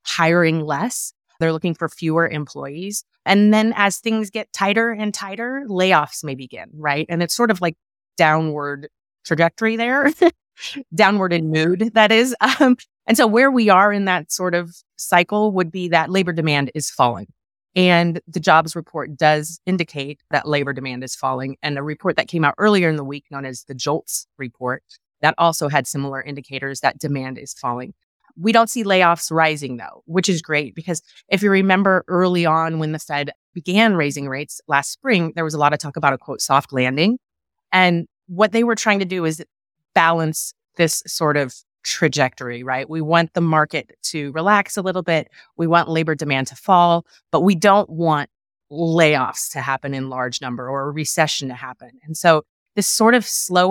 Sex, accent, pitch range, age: female, American, 145-195 Hz, 30-49